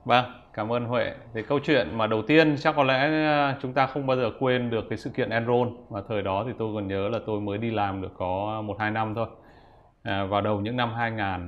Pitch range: 105-130 Hz